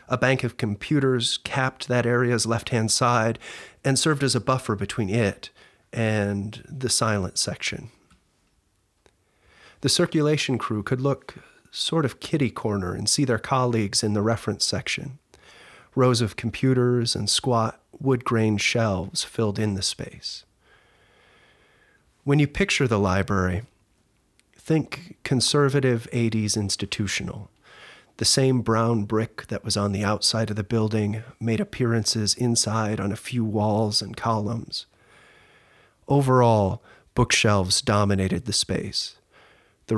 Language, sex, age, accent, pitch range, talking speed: English, male, 30-49, American, 105-125 Hz, 125 wpm